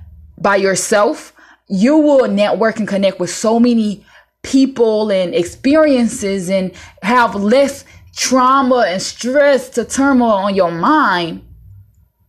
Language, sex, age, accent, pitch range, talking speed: English, female, 20-39, American, 190-270 Hz, 115 wpm